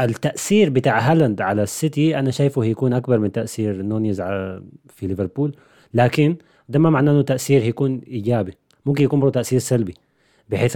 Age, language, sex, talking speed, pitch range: 30-49, Arabic, male, 150 wpm, 105-135 Hz